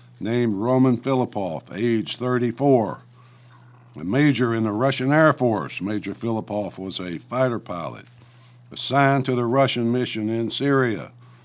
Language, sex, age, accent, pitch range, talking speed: English, male, 60-79, American, 115-135 Hz, 130 wpm